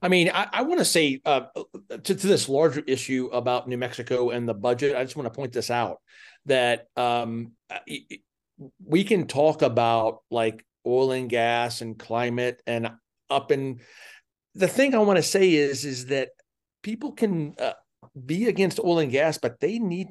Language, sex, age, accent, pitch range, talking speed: English, male, 40-59, American, 120-155 Hz, 180 wpm